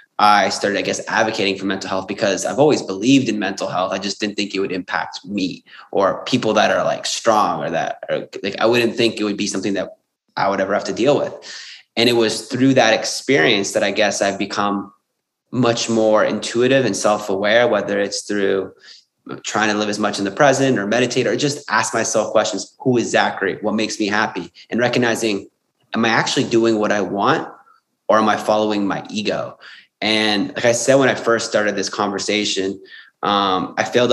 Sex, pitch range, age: male, 100-115 Hz, 20-39